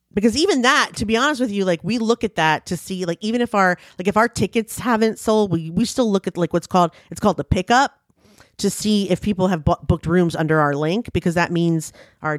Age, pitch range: 30-49, 175-230 Hz